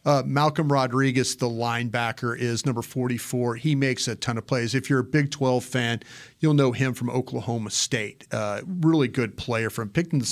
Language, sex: English, male